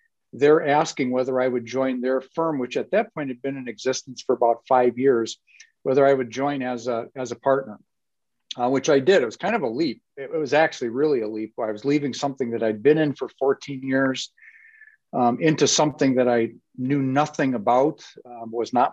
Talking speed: 210 wpm